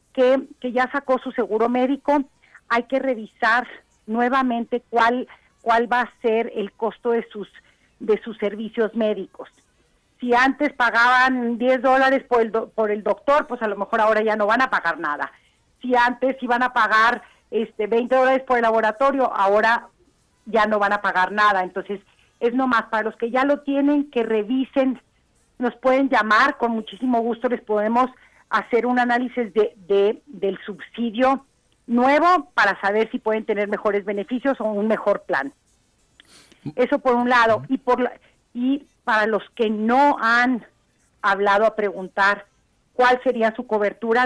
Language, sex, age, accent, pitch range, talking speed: Spanish, female, 40-59, Mexican, 215-255 Hz, 165 wpm